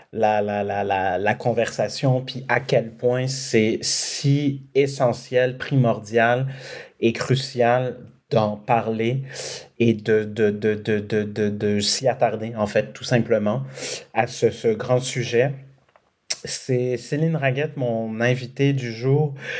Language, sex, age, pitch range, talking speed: French, male, 30-49, 105-130 Hz, 115 wpm